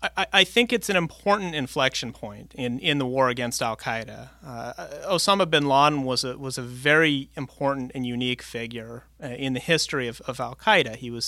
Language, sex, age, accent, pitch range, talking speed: English, male, 30-49, American, 120-140 Hz, 195 wpm